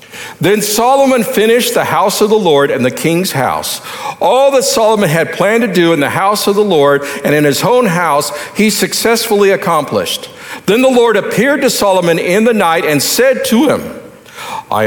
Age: 50-69